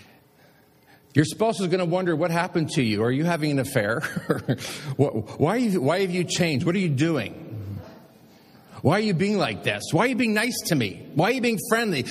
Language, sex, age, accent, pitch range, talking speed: English, male, 50-69, American, 125-210 Hz, 220 wpm